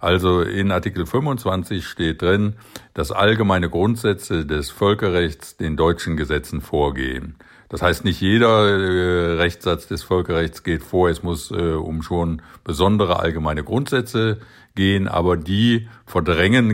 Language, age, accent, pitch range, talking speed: German, 50-69, German, 80-95 Hz, 135 wpm